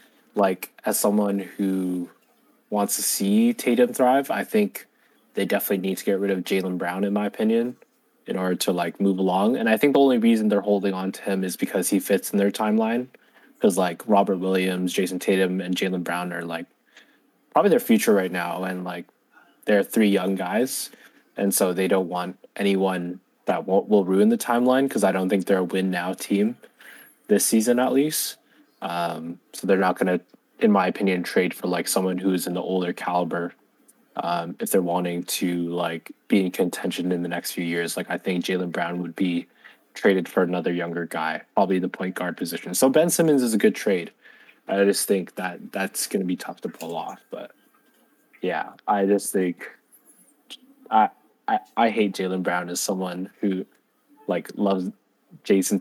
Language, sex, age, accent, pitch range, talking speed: English, male, 20-39, American, 90-105 Hz, 190 wpm